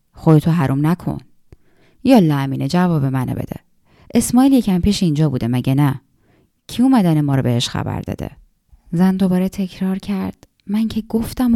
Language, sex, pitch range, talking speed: Persian, female, 160-205 Hz, 155 wpm